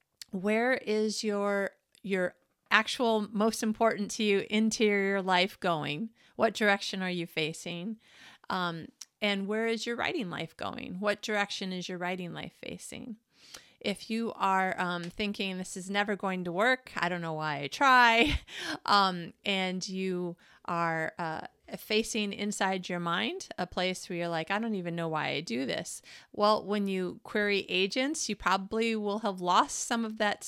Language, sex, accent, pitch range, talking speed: English, female, American, 185-220 Hz, 165 wpm